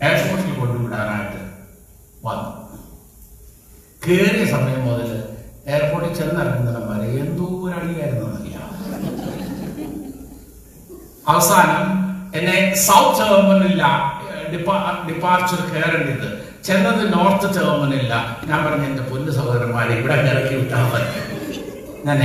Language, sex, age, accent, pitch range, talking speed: Malayalam, male, 60-79, native, 120-175 Hz, 70 wpm